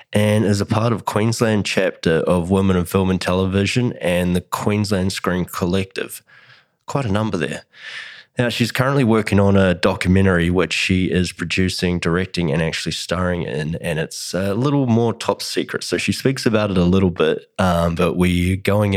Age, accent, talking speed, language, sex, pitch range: 20-39, Australian, 180 wpm, English, male, 90-105 Hz